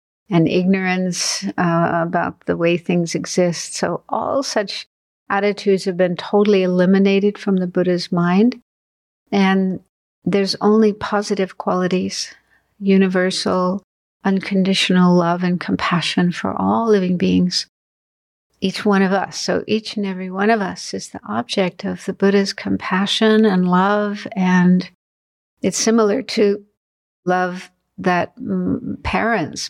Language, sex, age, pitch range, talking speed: English, female, 60-79, 180-205 Hz, 125 wpm